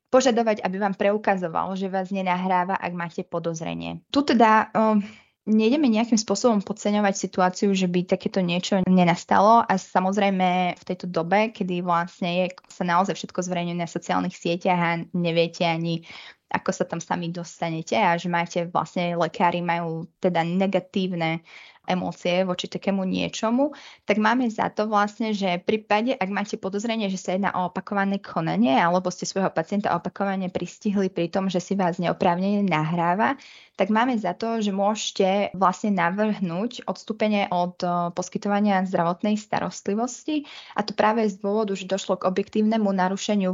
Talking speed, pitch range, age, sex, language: 150 wpm, 180-210 Hz, 20-39, female, Slovak